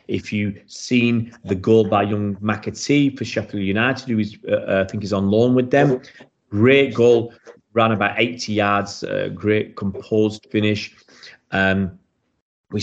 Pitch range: 105-130 Hz